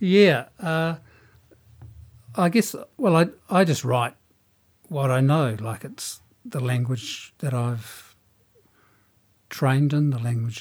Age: 60-79